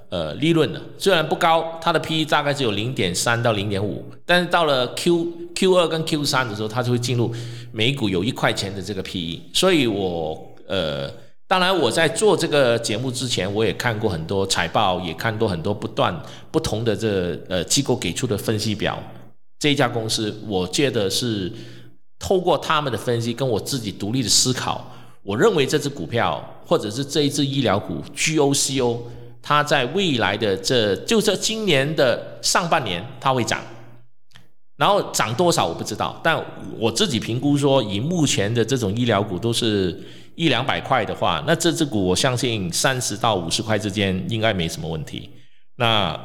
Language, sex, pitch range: Chinese, male, 100-140 Hz